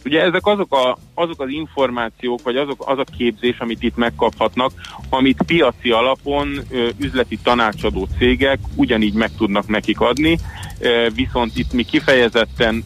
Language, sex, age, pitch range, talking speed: Hungarian, male, 40-59, 100-120 Hz, 130 wpm